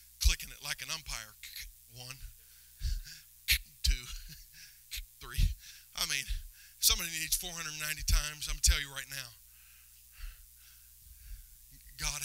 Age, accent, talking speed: 40-59, American, 105 wpm